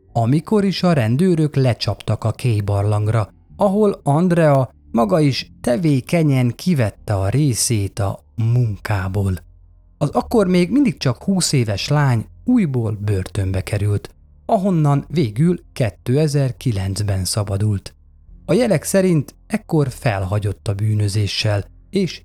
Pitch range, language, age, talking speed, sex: 100-150 Hz, Hungarian, 30-49, 110 wpm, male